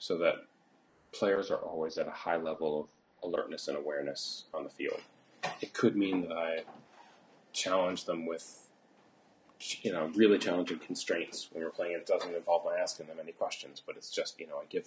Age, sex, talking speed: 30-49, male, 190 wpm